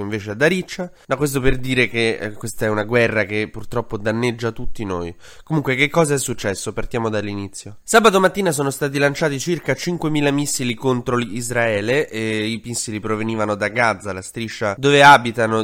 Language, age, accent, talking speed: Italian, 20-39, native, 175 wpm